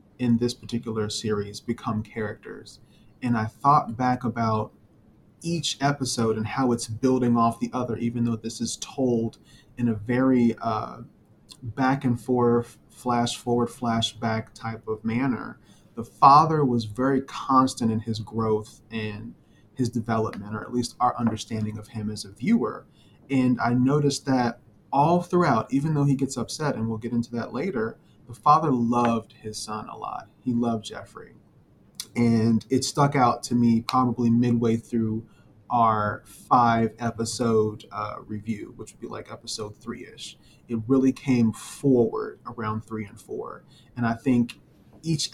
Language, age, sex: English, 30-49, male